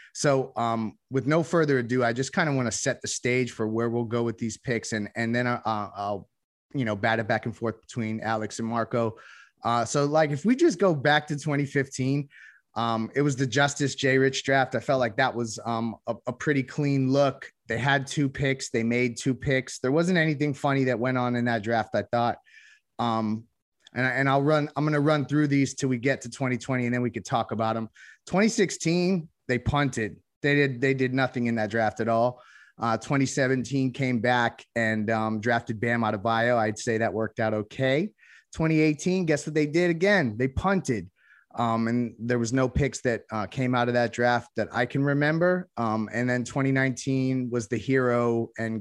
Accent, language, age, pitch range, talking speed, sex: American, English, 30-49, 115-140 Hz, 215 wpm, male